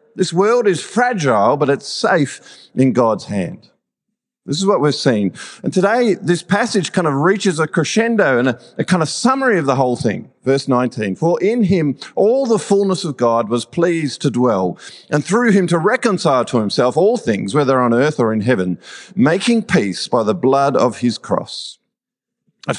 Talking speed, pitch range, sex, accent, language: 190 wpm, 130-195 Hz, male, Australian, English